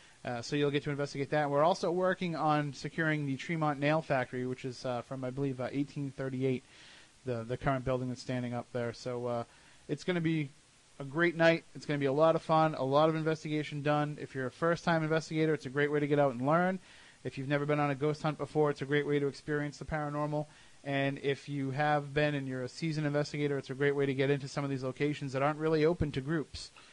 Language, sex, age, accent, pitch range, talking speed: English, male, 30-49, American, 135-160 Hz, 250 wpm